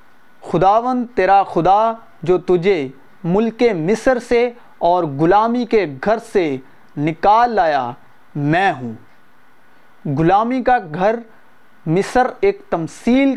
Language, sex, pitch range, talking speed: Urdu, male, 170-225 Hz, 105 wpm